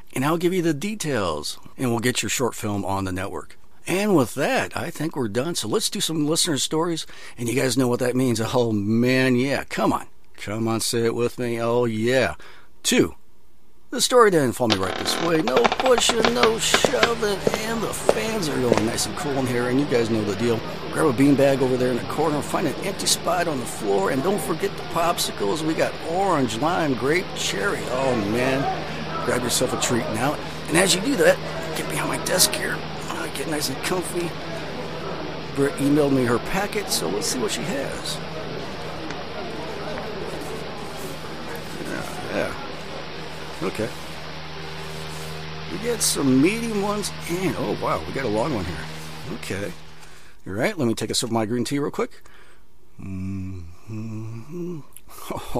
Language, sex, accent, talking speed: English, male, American, 180 wpm